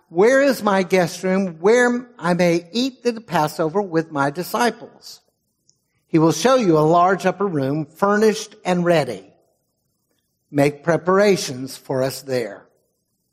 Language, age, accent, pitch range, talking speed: English, 60-79, American, 135-185 Hz, 135 wpm